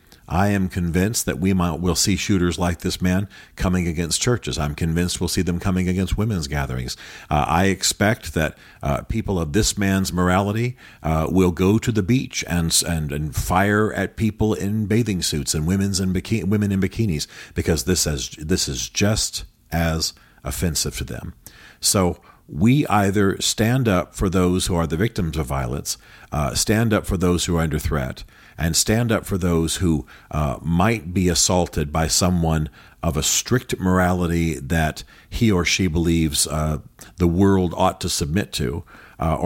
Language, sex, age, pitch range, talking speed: English, male, 50-69, 80-100 Hz, 175 wpm